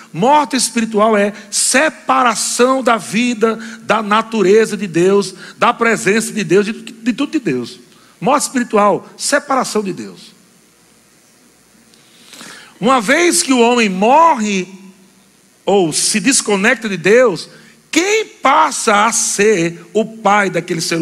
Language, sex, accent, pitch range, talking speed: Portuguese, male, Brazilian, 185-245 Hz, 125 wpm